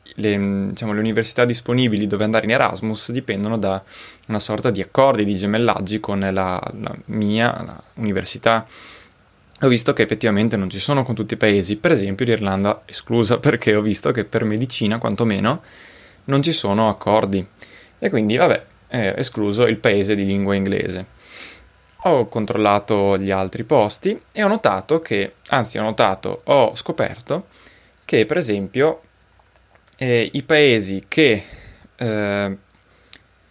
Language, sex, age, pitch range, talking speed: Italian, male, 20-39, 100-115 Hz, 145 wpm